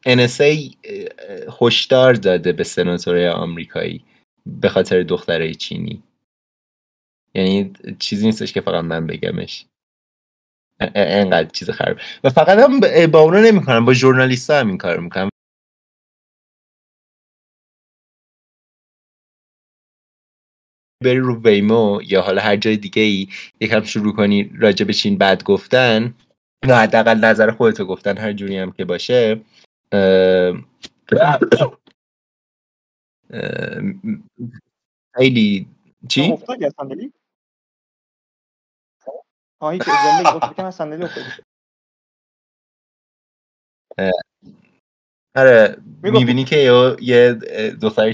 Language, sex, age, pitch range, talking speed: Persian, male, 30-49, 100-155 Hz, 75 wpm